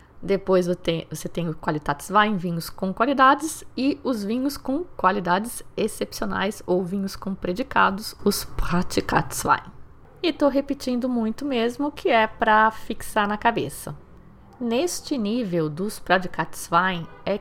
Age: 20-39